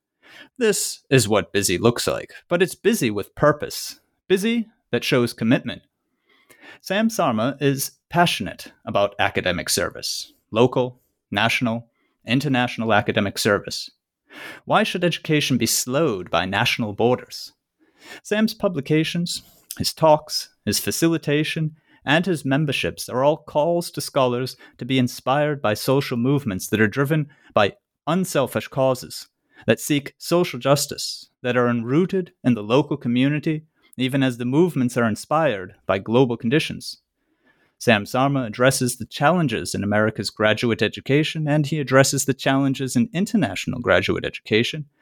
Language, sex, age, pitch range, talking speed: English, male, 30-49, 120-155 Hz, 130 wpm